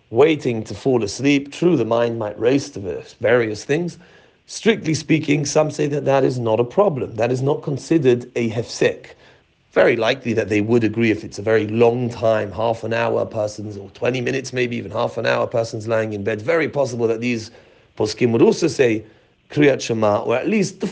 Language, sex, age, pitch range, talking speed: English, male, 40-59, 110-150 Hz, 200 wpm